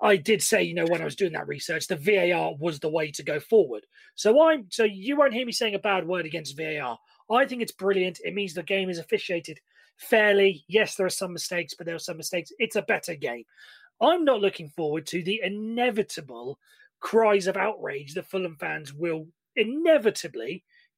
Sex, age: male, 30-49